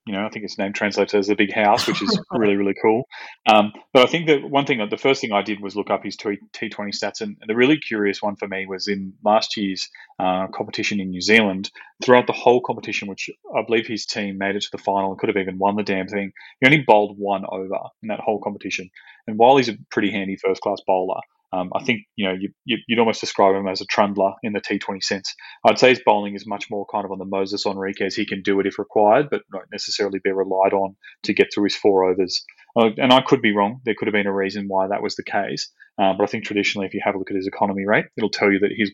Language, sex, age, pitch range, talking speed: English, male, 30-49, 95-110 Hz, 265 wpm